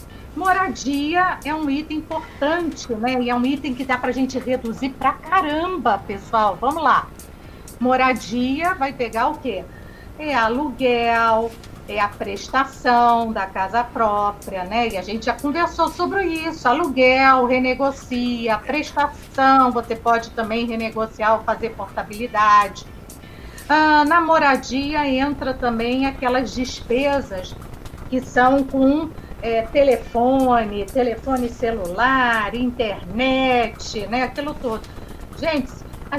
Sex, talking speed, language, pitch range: female, 120 wpm, Portuguese, 235-295 Hz